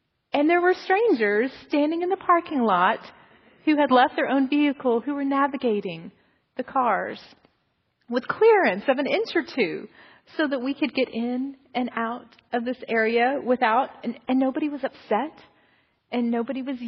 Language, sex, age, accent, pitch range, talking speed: English, female, 30-49, American, 230-290 Hz, 165 wpm